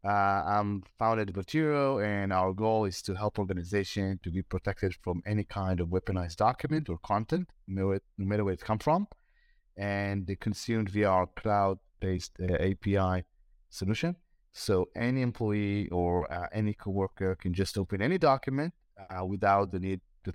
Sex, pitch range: male, 95-110 Hz